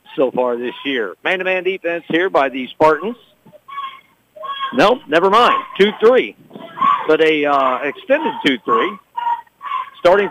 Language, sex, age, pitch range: English, male, 50-69, 160-275 Hz